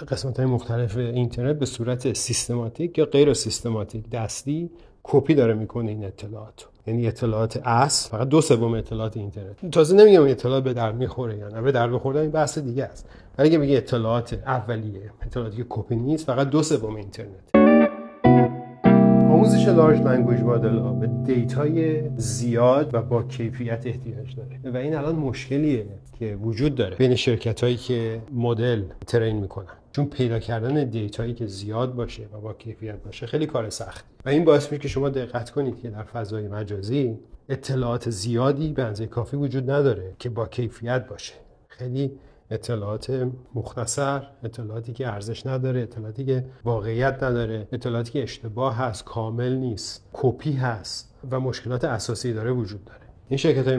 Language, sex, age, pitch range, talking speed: Persian, male, 40-59, 115-130 Hz, 155 wpm